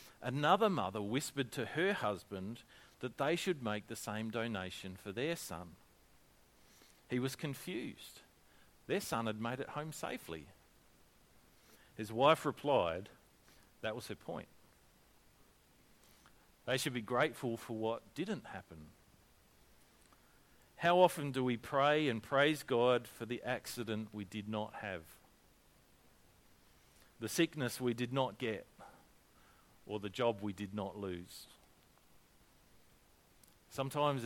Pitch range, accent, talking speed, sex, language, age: 105-130 Hz, Australian, 125 wpm, male, English, 50-69